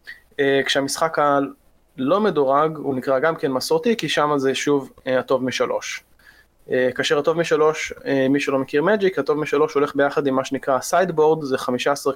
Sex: male